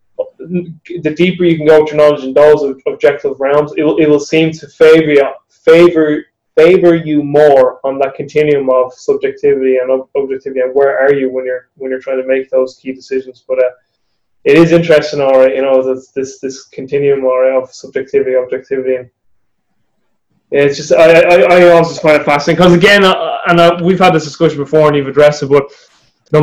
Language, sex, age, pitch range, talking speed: English, male, 20-39, 130-155 Hz, 200 wpm